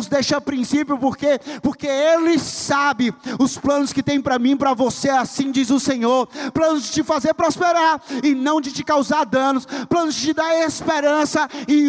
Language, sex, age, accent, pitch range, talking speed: Portuguese, male, 20-39, Brazilian, 200-285 Hz, 185 wpm